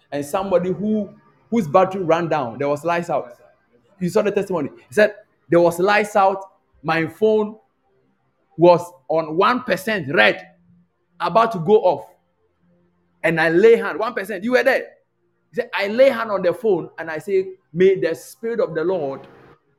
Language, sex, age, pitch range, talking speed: English, male, 50-69, 145-205 Hz, 170 wpm